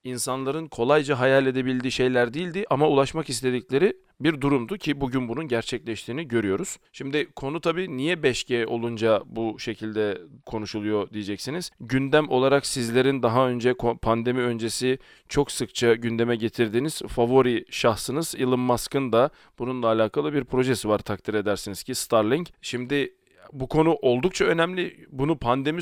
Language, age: Turkish, 40-59